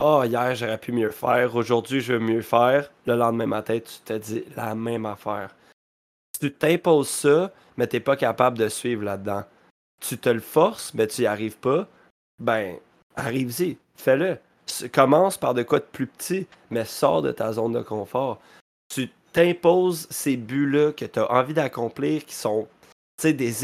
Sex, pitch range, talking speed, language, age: male, 110-140 Hz, 180 wpm, French, 20-39